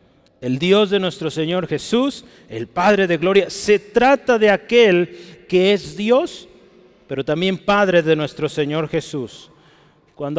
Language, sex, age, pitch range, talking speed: Spanish, male, 40-59, 155-215 Hz, 145 wpm